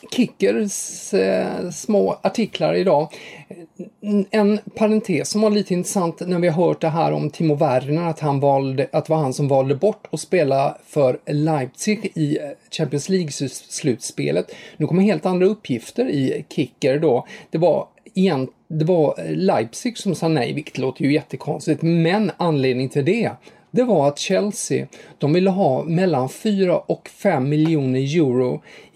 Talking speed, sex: 155 wpm, male